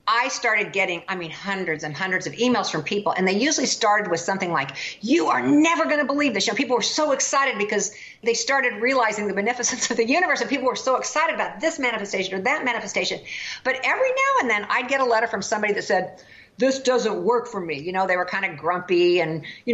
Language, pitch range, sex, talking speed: English, 185-255 Hz, female, 245 wpm